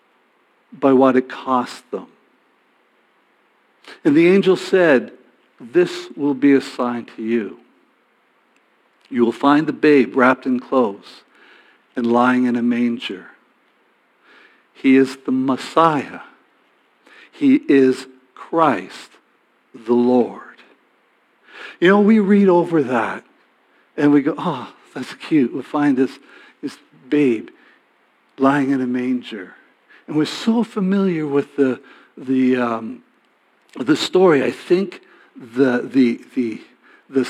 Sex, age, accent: male, 60-79, American